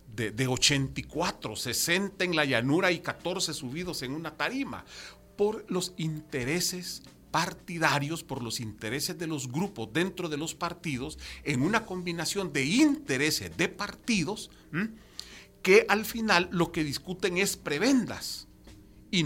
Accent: Mexican